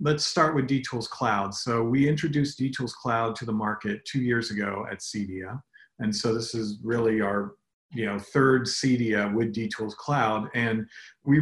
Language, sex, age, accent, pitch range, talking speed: English, male, 40-59, American, 115-140 Hz, 165 wpm